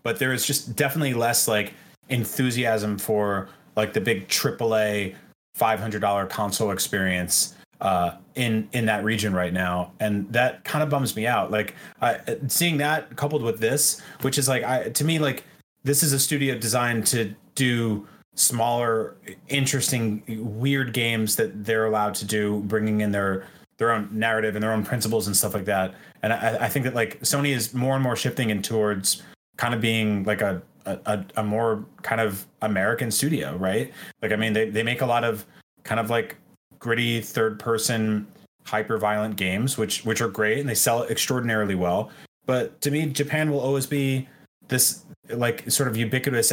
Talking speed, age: 180 wpm, 30-49